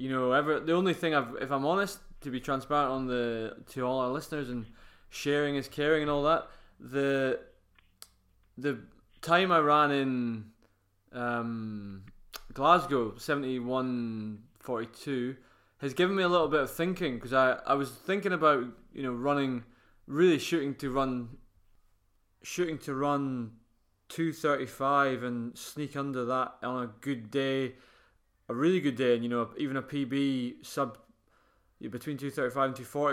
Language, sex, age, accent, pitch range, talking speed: English, male, 20-39, British, 125-145 Hz, 165 wpm